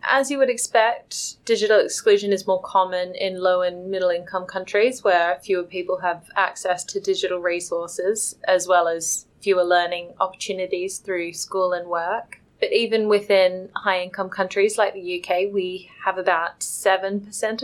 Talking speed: 150 wpm